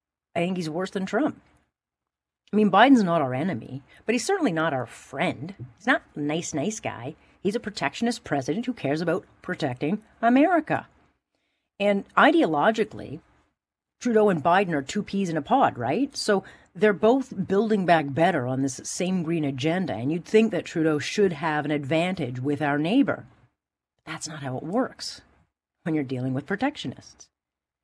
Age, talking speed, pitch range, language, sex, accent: 40-59, 170 wpm, 135-190 Hz, English, female, American